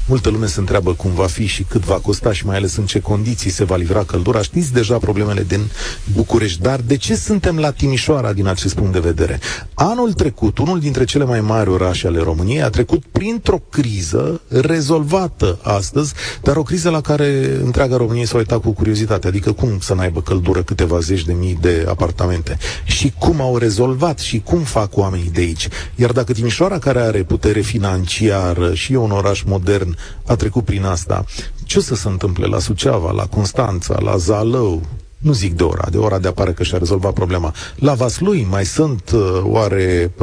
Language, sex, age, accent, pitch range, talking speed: Romanian, male, 40-59, native, 95-130 Hz, 190 wpm